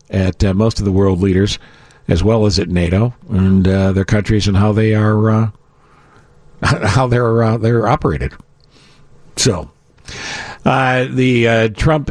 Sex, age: male, 50-69